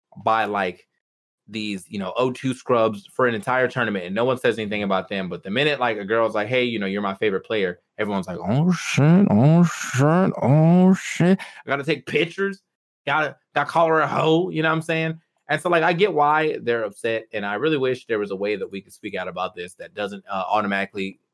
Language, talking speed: English, 235 wpm